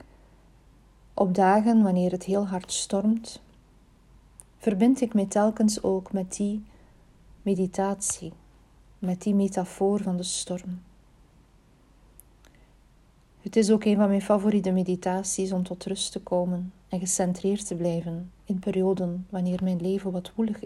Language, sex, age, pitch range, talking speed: Dutch, female, 40-59, 185-210 Hz, 130 wpm